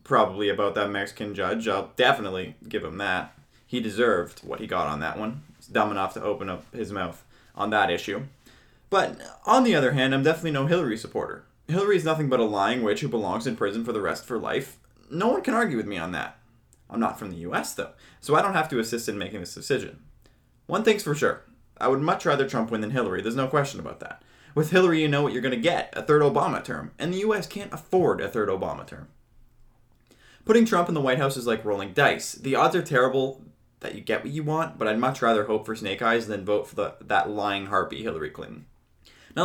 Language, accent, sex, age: English, American, male, 20-39